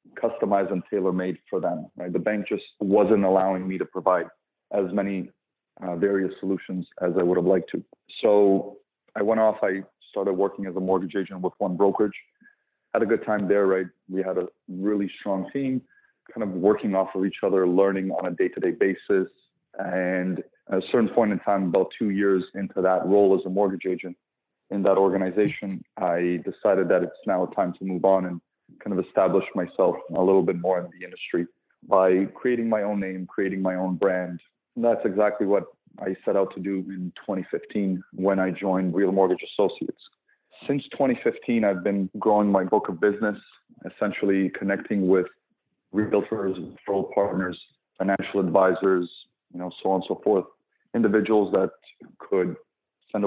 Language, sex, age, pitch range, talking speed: English, male, 30-49, 95-100 Hz, 180 wpm